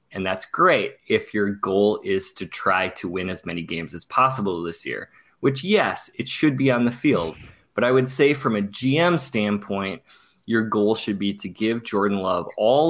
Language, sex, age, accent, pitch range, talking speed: English, male, 20-39, American, 100-125 Hz, 200 wpm